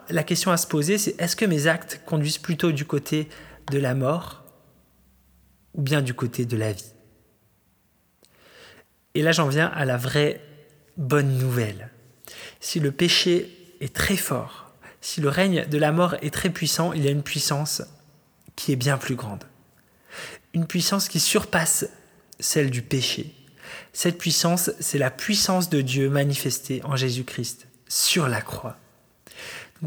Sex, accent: male, French